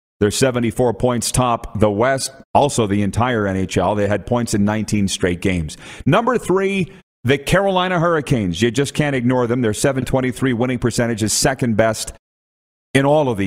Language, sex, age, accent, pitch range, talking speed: English, male, 40-59, American, 100-135 Hz, 165 wpm